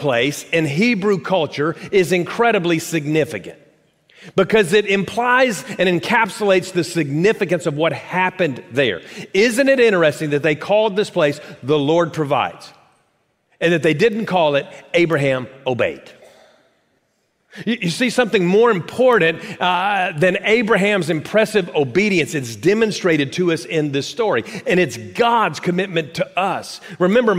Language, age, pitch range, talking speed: English, 40-59, 170-220 Hz, 135 wpm